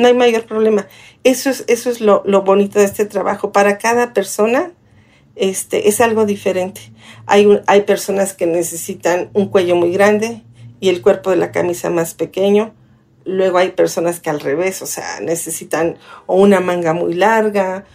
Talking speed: 175 wpm